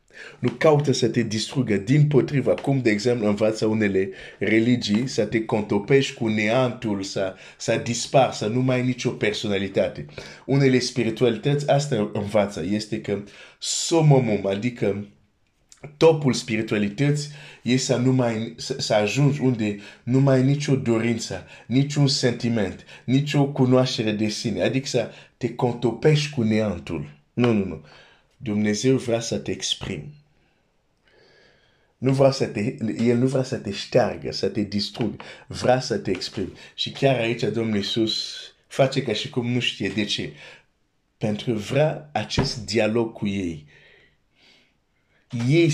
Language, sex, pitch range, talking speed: Romanian, male, 105-135 Hz, 135 wpm